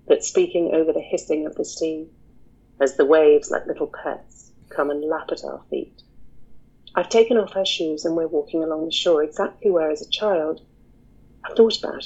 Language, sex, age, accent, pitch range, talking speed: English, female, 40-59, British, 155-230 Hz, 195 wpm